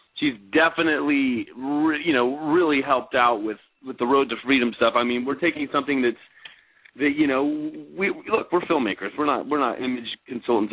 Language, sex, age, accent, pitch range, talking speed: English, male, 30-49, American, 110-140 Hz, 185 wpm